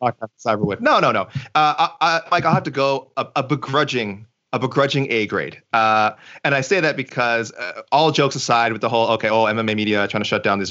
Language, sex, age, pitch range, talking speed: English, male, 30-49, 105-135 Hz, 230 wpm